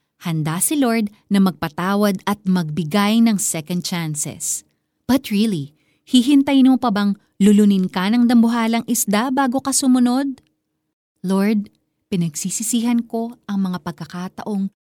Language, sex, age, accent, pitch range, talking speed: Filipino, female, 30-49, native, 170-235 Hz, 120 wpm